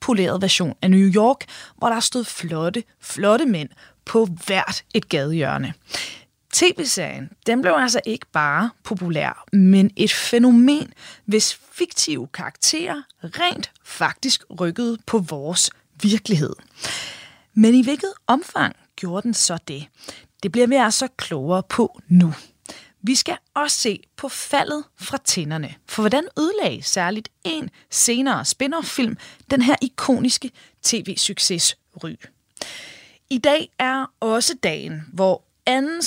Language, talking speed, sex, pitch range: Danish, 125 wpm, female, 185-260 Hz